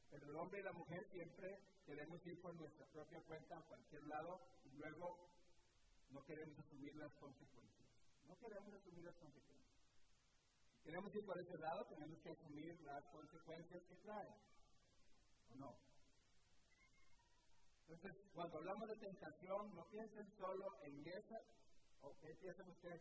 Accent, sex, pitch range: Mexican, male, 145-190 Hz